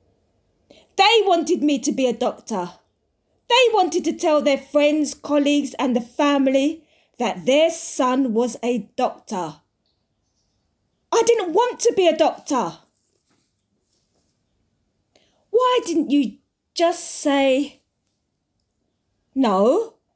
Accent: British